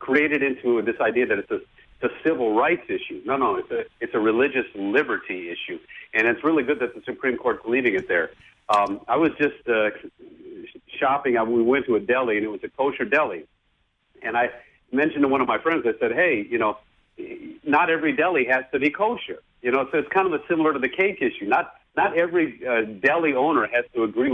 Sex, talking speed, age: male, 225 wpm, 50-69